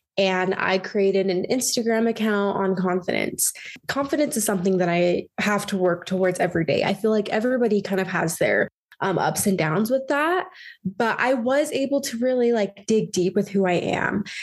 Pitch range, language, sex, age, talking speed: 185-220 Hz, English, female, 20-39, 190 wpm